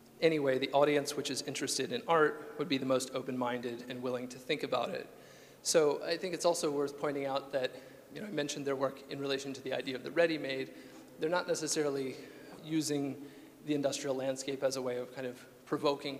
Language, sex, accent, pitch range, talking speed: English, male, American, 125-145 Hz, 210 wpm